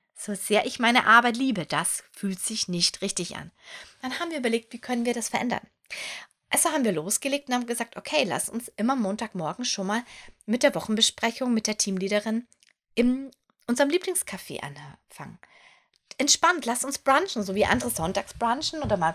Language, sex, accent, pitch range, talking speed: German, female, German, 205-270 Hz, 175 wpm